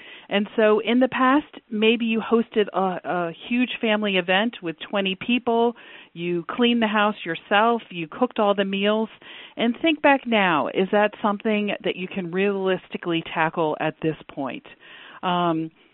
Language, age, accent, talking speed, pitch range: English, 40-59, American, 160 wpm, 170-210 Hz